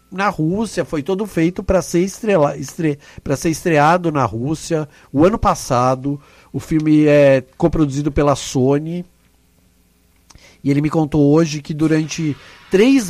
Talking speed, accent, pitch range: 135 wpm, Brazilian, 125-175 Hz